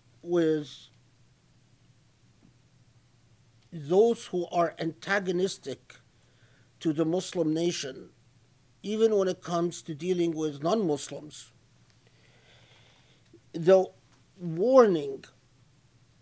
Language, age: English, 50-69